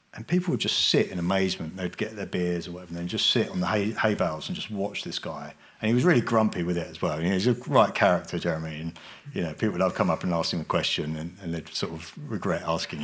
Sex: male